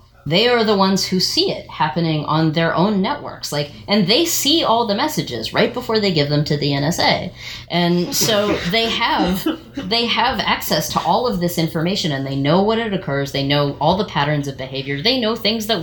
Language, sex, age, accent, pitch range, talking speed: English, female, 30-49, American, 140-195 Hz, 210 wpm